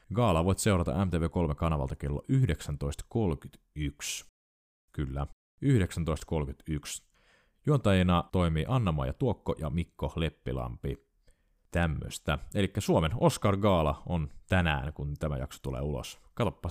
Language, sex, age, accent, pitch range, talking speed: Finnish, male, 30-49, native, 70-95 Hz, 95 wpm